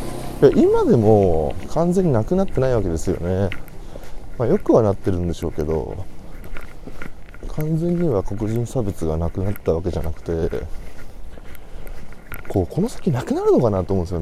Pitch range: 90-145 Hz